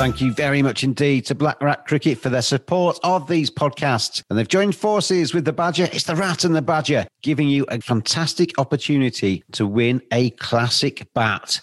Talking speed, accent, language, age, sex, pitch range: 195 wpm, British, English, 40-59, male, 115-155 Hz